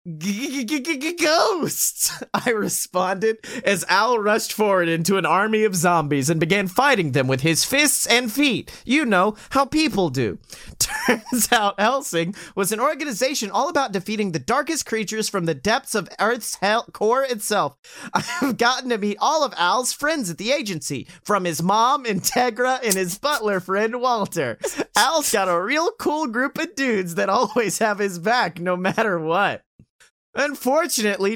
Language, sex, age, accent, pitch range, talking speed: English, male, 30-49, American, 180-270 Hz, 165 wpm